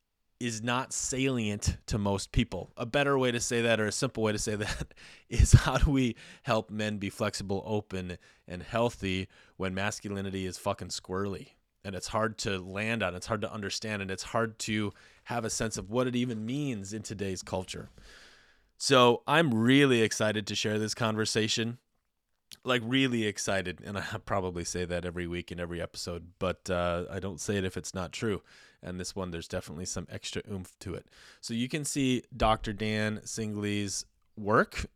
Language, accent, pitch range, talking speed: English, American, 95-115 Hz, 185 wpm